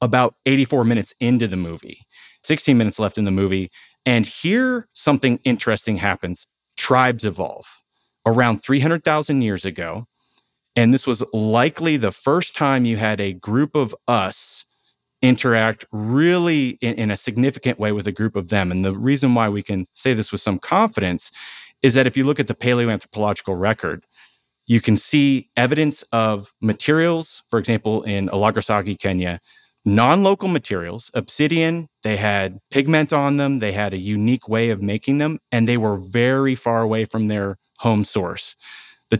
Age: 30-49